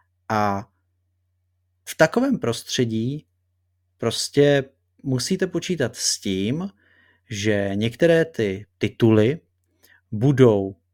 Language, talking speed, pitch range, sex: Czech, 75 wpm, 100-125 Hz, male